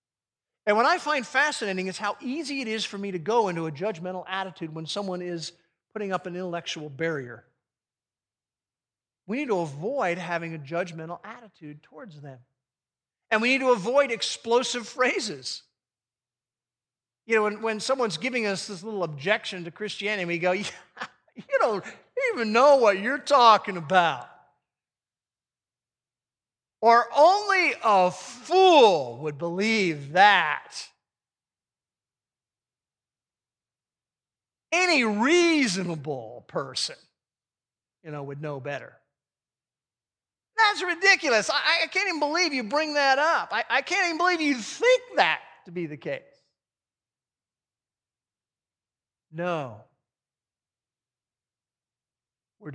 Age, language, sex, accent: 40-59, English, male, American